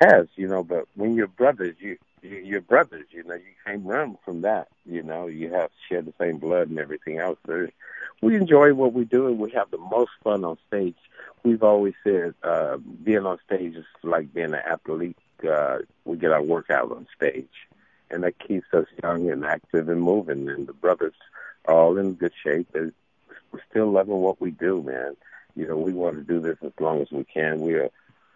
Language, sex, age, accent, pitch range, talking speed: English, male, 60-79, American, 80-105 Hz, 215 wpm